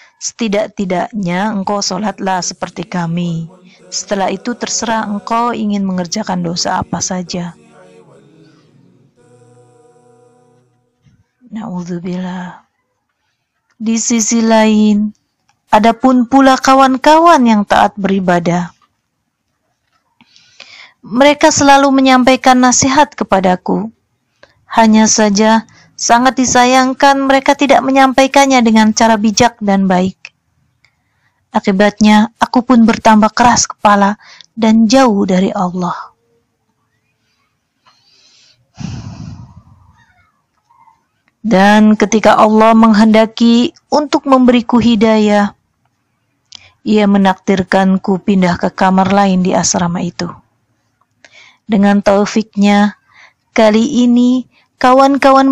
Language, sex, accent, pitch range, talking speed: Indonesian, female, native, 180-240 Hz, 80 wpm